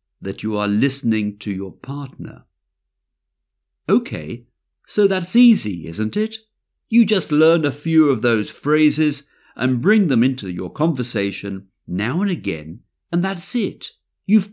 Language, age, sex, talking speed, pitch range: English, 50-69, male, 140 wpm, 105-175 Hz